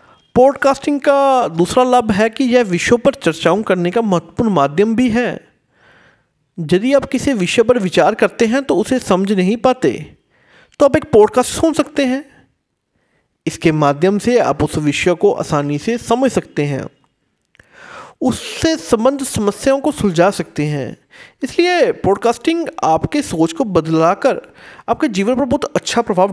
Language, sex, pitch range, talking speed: Hindi, male, 170-260 Hz, 155 wpm